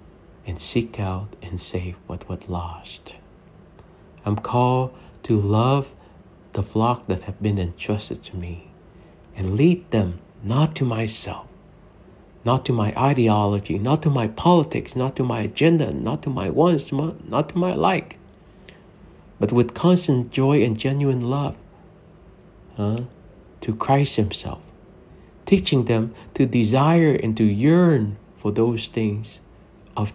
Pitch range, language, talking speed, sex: 95-125 Hz, English, 135 wpm, male